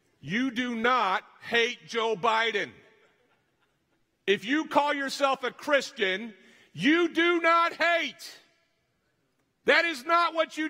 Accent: American